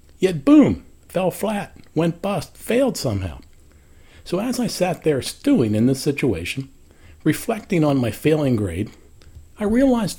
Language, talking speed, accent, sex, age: English, 140 wpm, American, male, 60-79